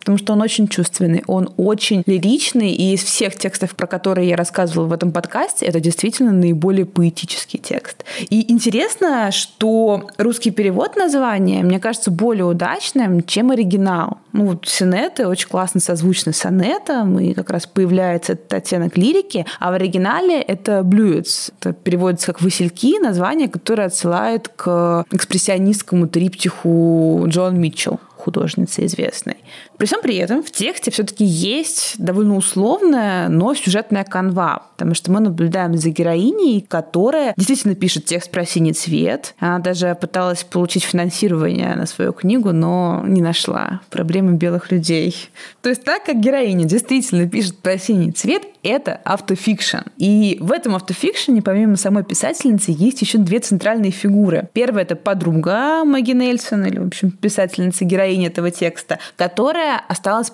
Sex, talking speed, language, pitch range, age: female, 145 wpm, Russian, 180-225 Hz, 20-39